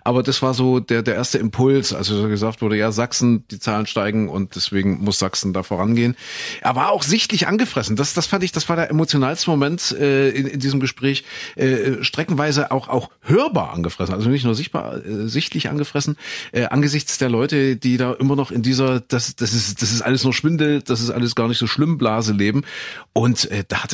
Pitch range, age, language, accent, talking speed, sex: 105-130 Hz, 40-59, German, German, 215 wpm, male